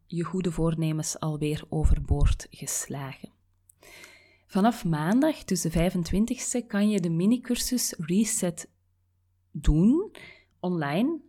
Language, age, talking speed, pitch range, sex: Dutch, 30-49, 95 wpm, 160-205 Hz, female